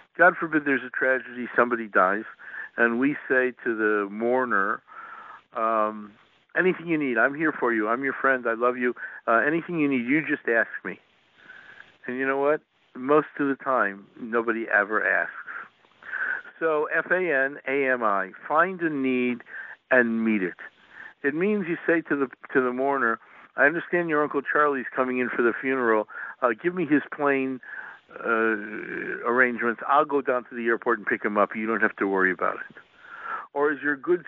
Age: 60-79